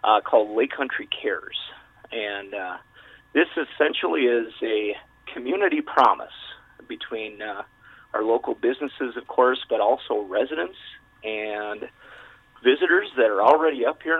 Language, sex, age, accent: English, male, 40-59, American